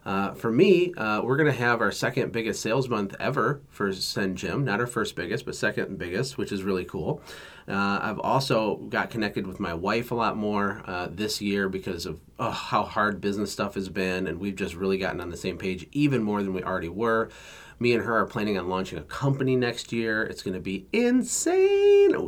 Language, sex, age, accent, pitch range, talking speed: English, male, 30-49, American, 95-125 Hz, 220 wpm